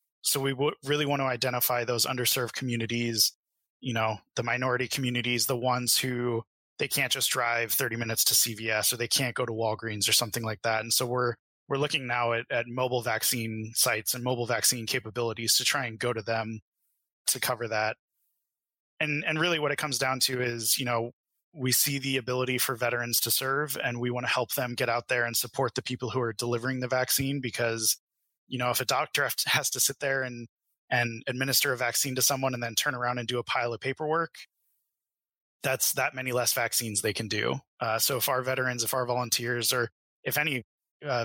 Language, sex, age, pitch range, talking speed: English, male, 20-39, 115-130 Hz, 210 wpm